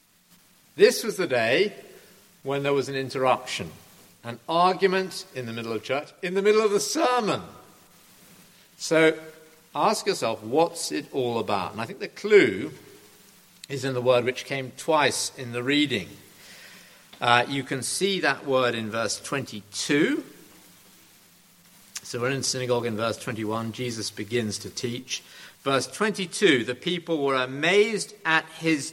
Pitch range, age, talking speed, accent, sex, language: 120-170 Hz, 50-69, 150 wpm, British, male, English